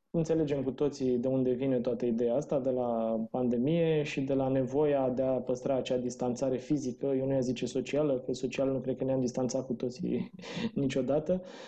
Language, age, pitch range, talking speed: Romanian, 20-39, 130-170 Hz, 190 wpm